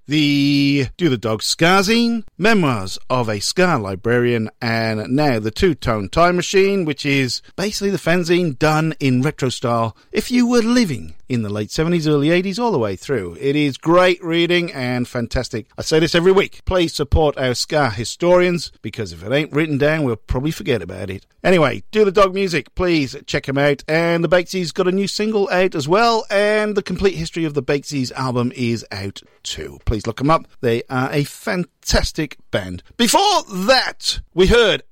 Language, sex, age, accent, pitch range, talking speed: English, male, 50-69, British, 115-180 Hz, 185 wpm